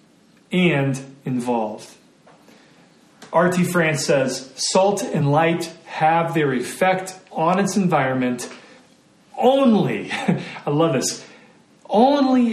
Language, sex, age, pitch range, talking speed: English, male, 40-59, 130-185 Hz, 90 wpm